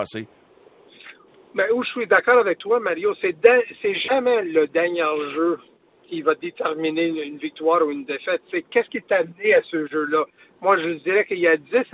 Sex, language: male, French